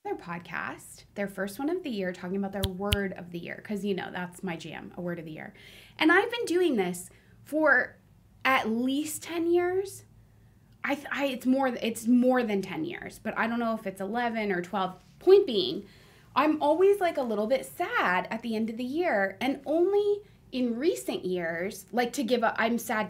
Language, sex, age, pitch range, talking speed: English, female, 20-39, 190-280 Hz, 210 wpm